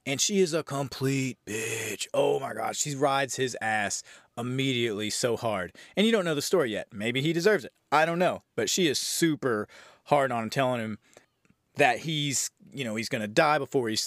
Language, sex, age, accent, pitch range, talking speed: English, male, 30-49, American, 125-175 Hz, 205 wpm